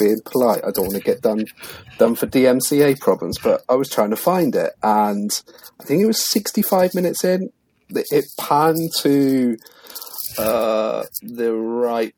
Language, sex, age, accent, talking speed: English, male, 40-59, British, 165 wpm